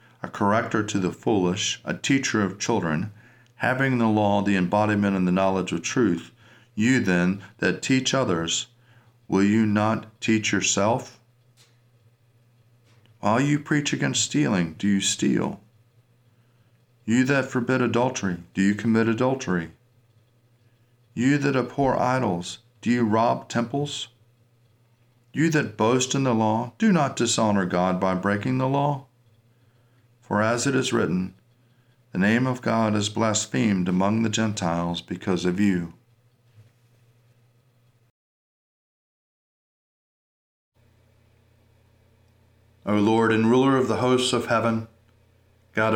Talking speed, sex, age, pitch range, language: 125 wpm, male, 40-59, 100-120 Hz, English